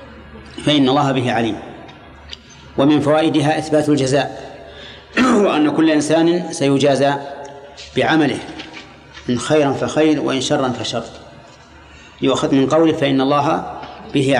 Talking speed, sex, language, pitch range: 105 wpm, male, Arabic, 125-150 Hz